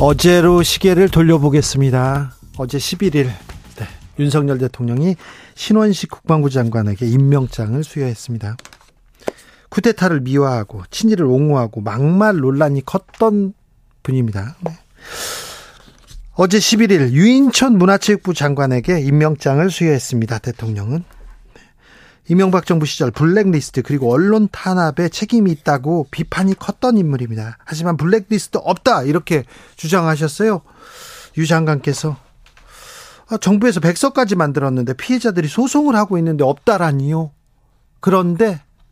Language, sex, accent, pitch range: Korean, male, native, 135-190 Hz